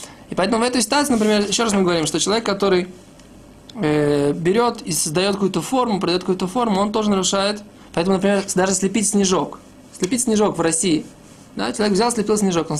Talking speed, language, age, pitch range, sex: 190 wpm, Russian, 20-39, 180-225 Hz, male